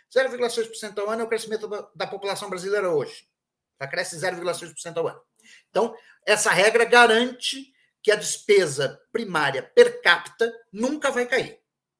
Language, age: Portuguese, 50-69